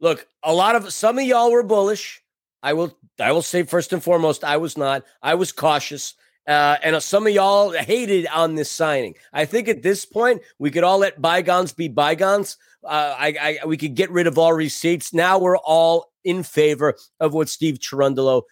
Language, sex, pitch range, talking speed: English, male, 155-200 Hz, 200 wpm